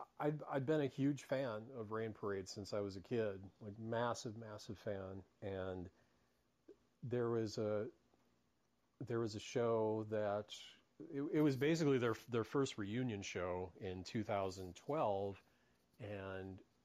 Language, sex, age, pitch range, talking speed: English, male, 40-59, 95-115 Hz, 140 wpm